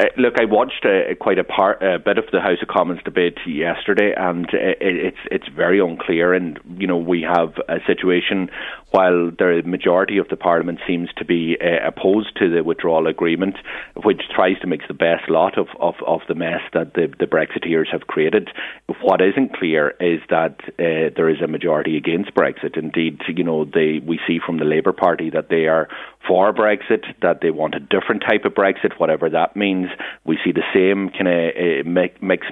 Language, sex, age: English, male, 30-49